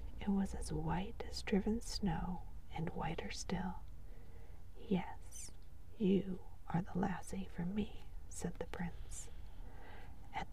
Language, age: English, 40-59